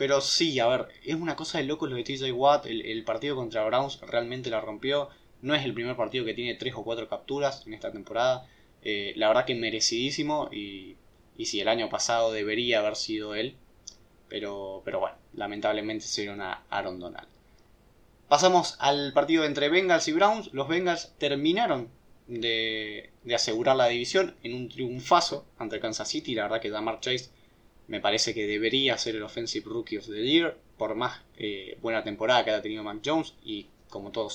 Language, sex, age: Spanish, male, 20-39